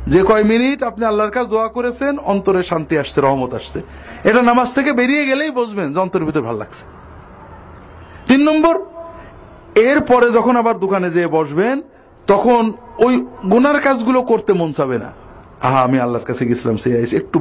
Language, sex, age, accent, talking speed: Bengali, male, 50-69, native, 35 wpm